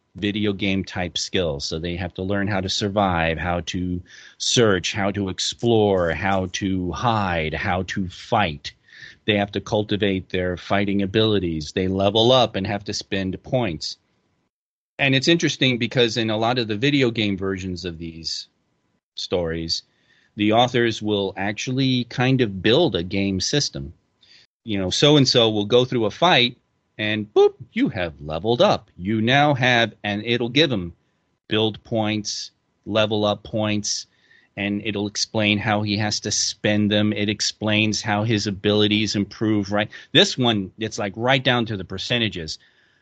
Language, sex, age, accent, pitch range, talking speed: English, male, 30-49, American, 95-115 Hz, 165 wpm